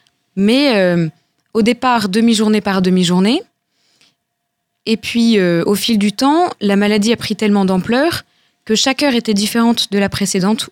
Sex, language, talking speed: female, French, 155 wpm